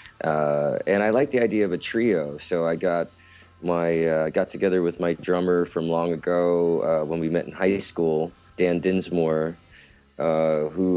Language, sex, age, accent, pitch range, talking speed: English, male, 30-49, American, 80-95 Hz, 180 wpm